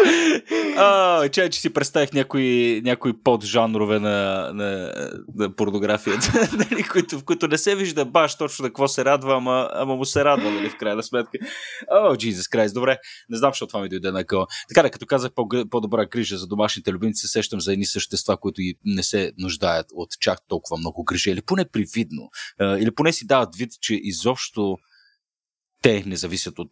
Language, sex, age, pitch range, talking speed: Bulgarian, male, 30-49, 100-145 Hz, 185 wpm